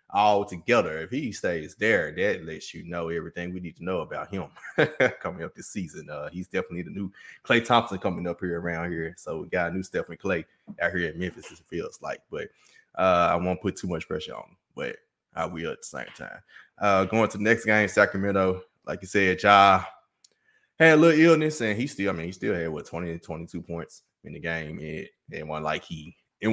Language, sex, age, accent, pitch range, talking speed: English, male, 20-39, American, 85-110 Hz, 230 wpm